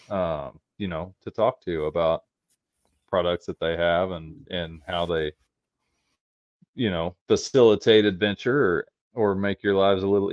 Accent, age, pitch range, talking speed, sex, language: American, 30-49, 90-105 Hz, 150 wpm, male, English